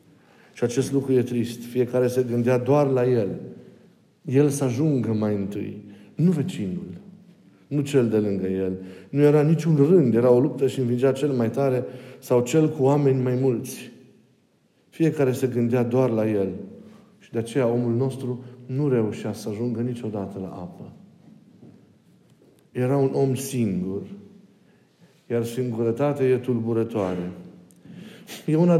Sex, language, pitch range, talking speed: male, Romanian, 115-140 Hz, 145 wpm